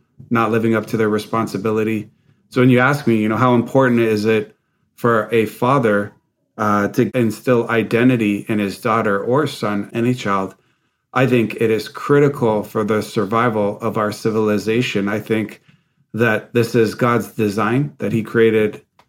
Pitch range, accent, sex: 110-125 Hz, American, male